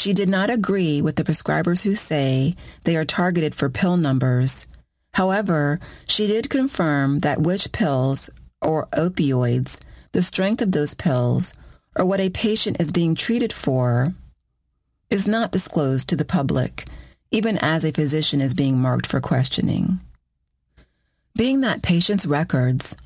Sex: female